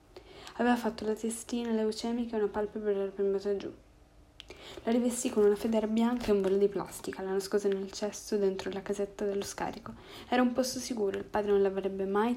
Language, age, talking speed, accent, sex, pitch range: Italian, 10-29, 195 wpm, native, female, 200-220 Hz